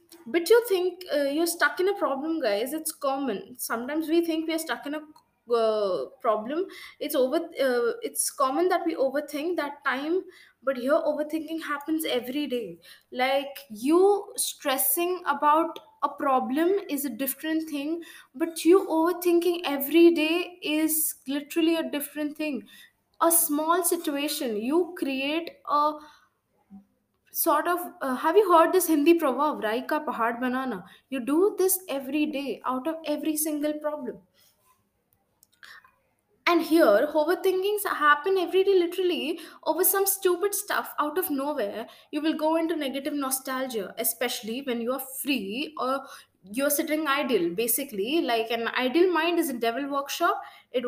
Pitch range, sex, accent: 270-340 Hz, female, Indian